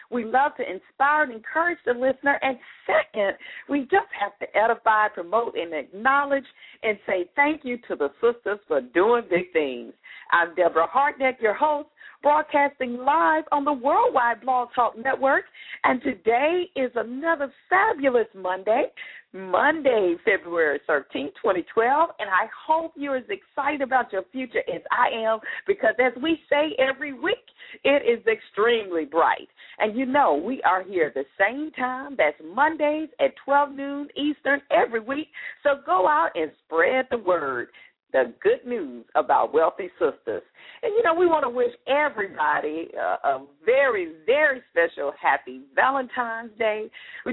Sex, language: female, English